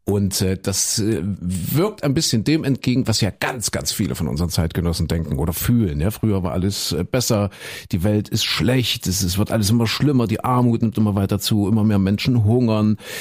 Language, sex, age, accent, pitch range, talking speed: German, male, 50-69, German, 100-130 Hz, 190 wpm